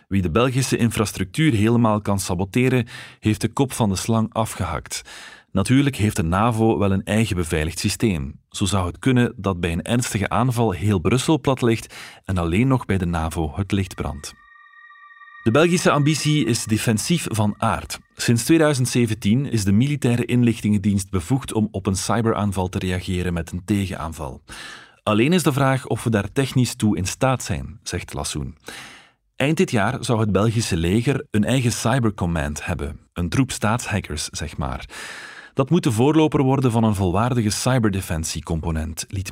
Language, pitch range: Dutch, 95-130 Hz